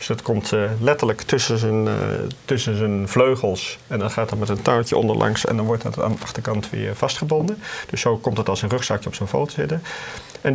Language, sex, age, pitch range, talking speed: Dutch, male, 40-59, 100-130 Hz, 215 wpm